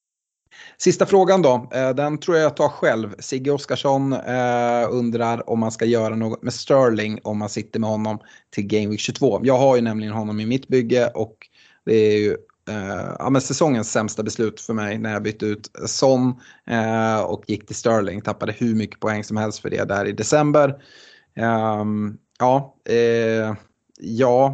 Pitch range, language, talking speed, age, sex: 105-125 Hz, Swedish, 180 wpm, 30-49, male